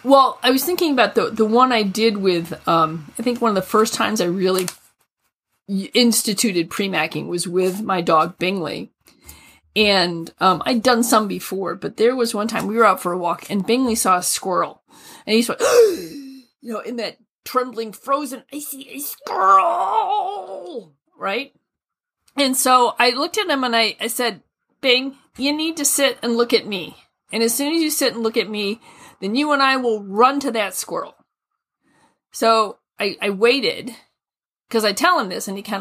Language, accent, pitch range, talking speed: English, American, 195-265 Hz, 190 wpm